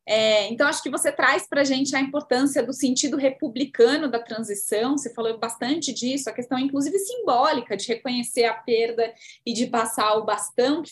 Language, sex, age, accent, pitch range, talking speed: Portuguese, female, 20-39, Brazilian, 235-295 Hz, 180 wpm